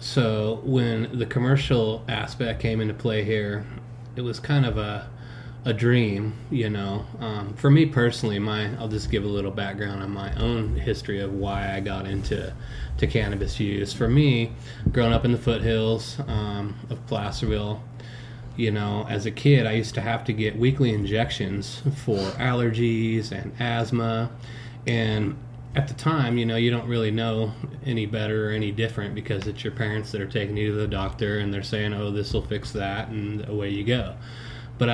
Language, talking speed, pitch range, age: English, 185 wpm, 105-120 Hz, 20-39